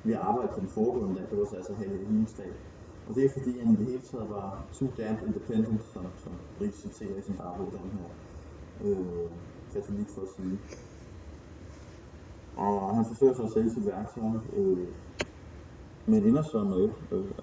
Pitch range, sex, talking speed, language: 90-120 Hz, male, 190 wpm, Danish